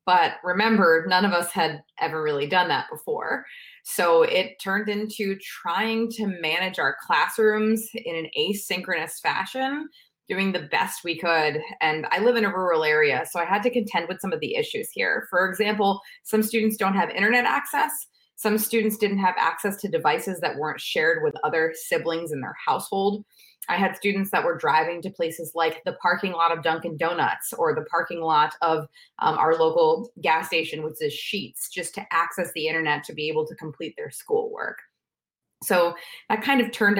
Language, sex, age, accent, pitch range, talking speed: English, female, 20-39, American, 165-225 Hz, 190 wpm